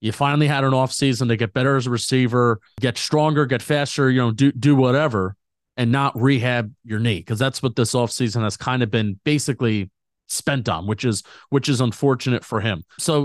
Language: English